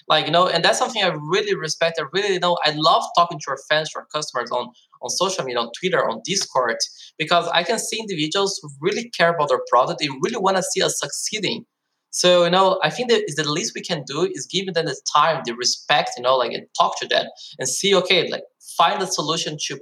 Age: 20-39